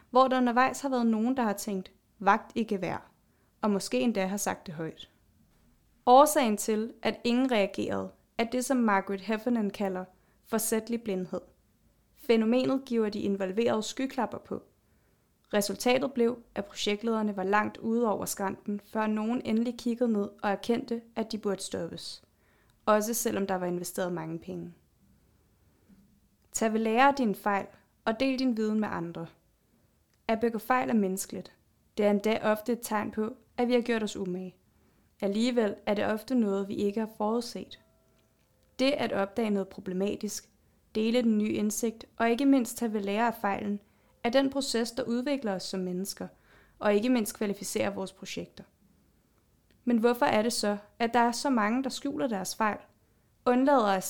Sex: female